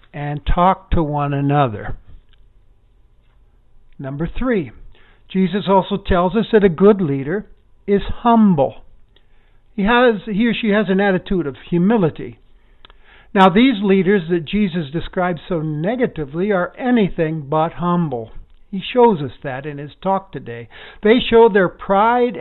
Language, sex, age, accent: English, male, 60-79, American